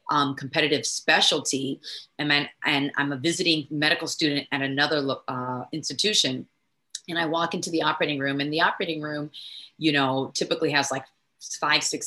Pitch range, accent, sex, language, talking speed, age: 135-160 Hz, American, female, English, 165 wpm, 30-49